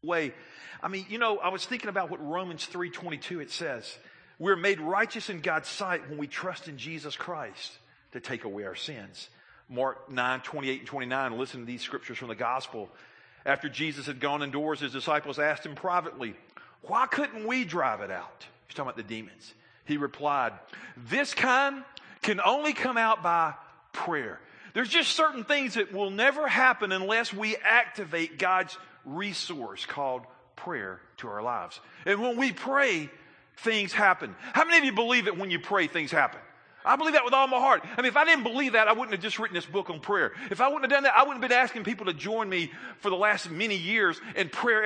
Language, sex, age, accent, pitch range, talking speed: English, male, 40-59, American, 160-250 Hz, 205 wpm